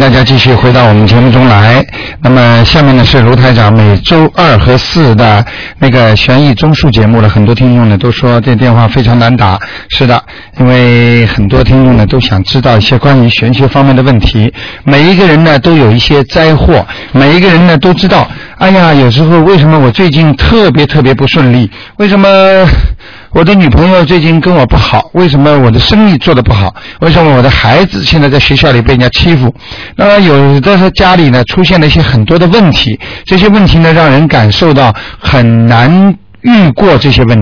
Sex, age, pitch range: male, 60-79, 120-160 Hz